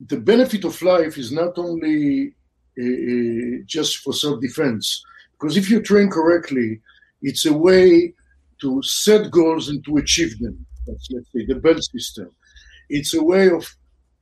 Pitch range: 130-175 Hz